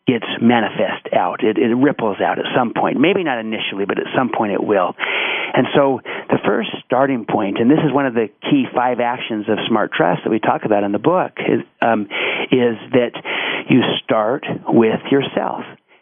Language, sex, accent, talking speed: English, male, American, 195 wpm